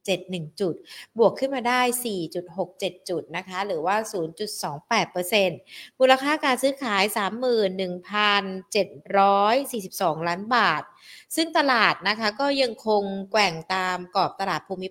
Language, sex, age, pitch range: Thai, female, 20-39, 185-230 Hz